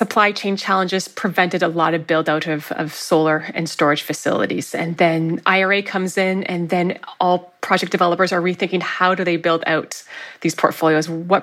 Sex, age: female, 20-39